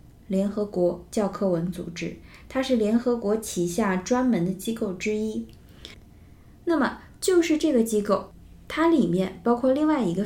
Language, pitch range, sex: Chinese, 180-235 Hz, female